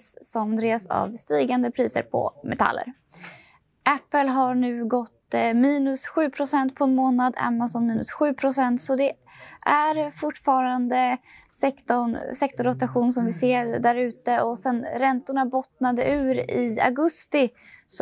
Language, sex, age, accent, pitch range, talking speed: Swedish, female, 20-39, native, 235-280 Hz, 125 wpm